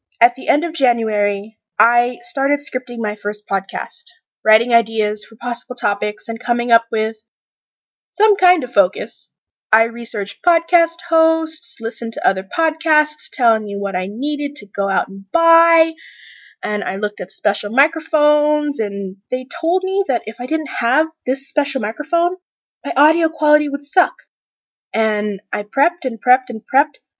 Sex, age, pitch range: female, 20-39, 215-300 Hz